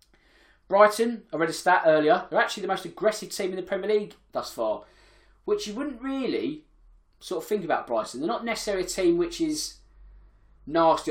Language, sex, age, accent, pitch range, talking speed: English, male, 20-39, British, 130-205 Hz, 190 wpm